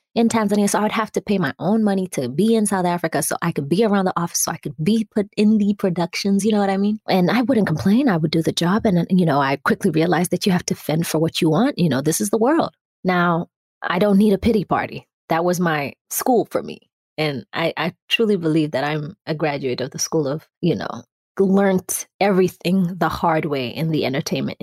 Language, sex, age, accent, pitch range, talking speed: English, female, 20-39, American, 170-215 Hz, 250 wpm